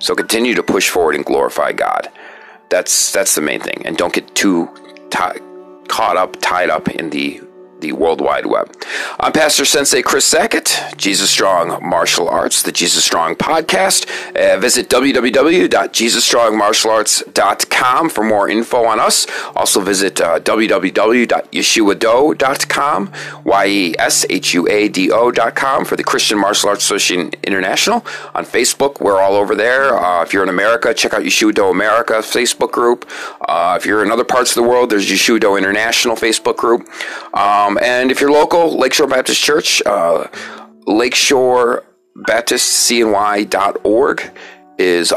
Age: 40-59